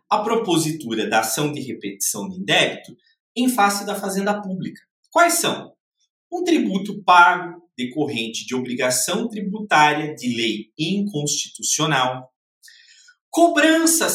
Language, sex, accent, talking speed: Portuguese, male, Brazilian, 110 wpm